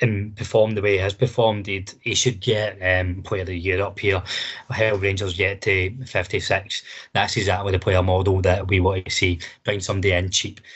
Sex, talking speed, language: male, 205 wpm, English